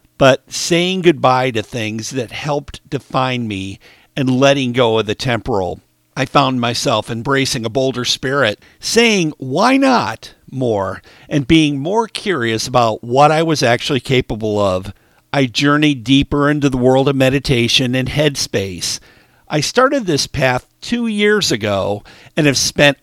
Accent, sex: American, male